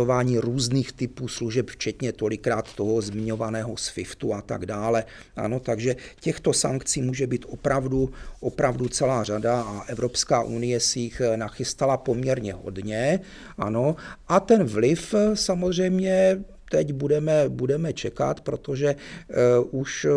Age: 40-59